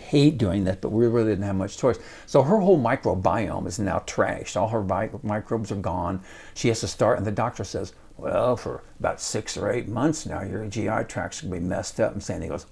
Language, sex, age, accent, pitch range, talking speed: English, male, 60-79, American, 105-140 Hz, 230 wpm